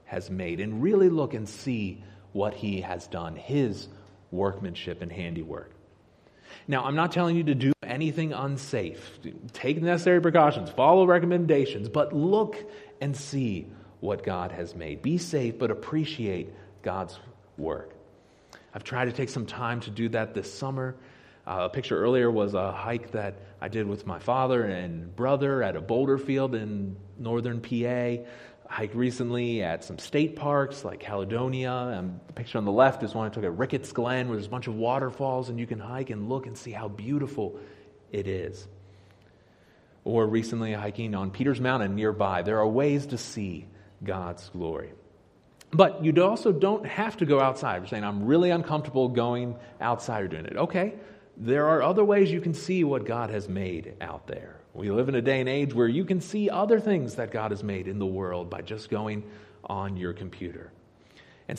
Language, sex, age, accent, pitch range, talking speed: English, male, 30-49, American, 100-140 Hz, 180 wpm